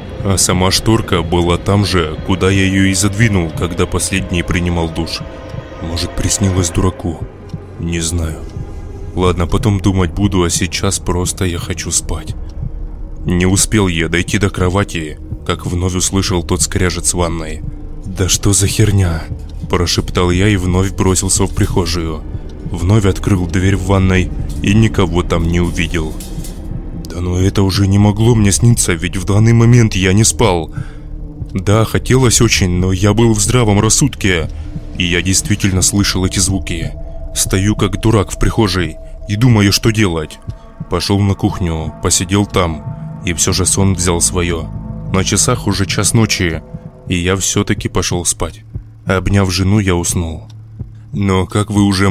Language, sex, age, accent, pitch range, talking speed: Russian, male, 20-39, native, 85-105 Hz, 150 wpm